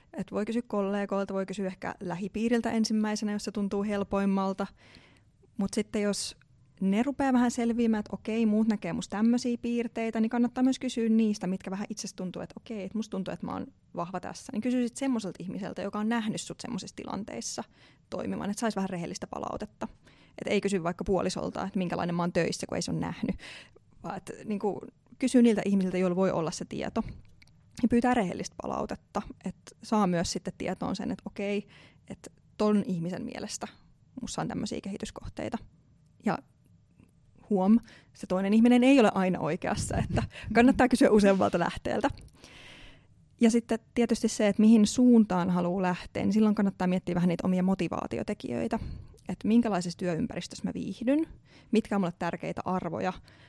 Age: 20-39